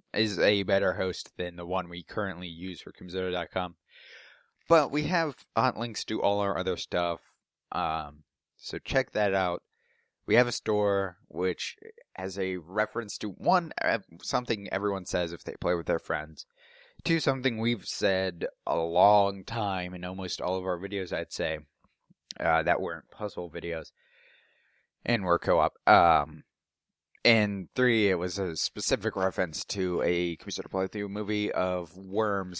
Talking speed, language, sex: 155 wpm, English, male